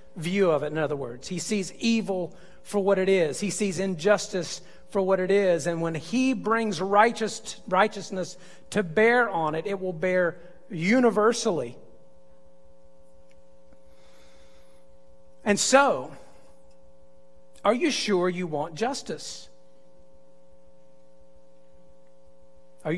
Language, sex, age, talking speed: English, male, 40-59, 110 wpm